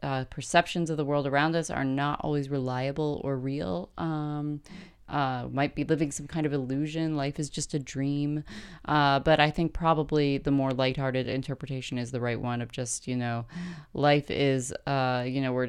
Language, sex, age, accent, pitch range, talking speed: English, female, 20-39, American, 130-150 Hz, 190 wpm